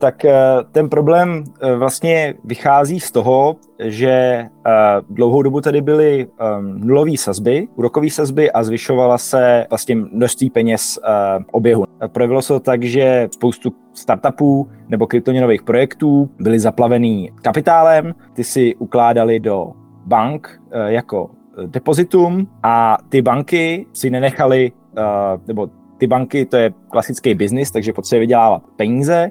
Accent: native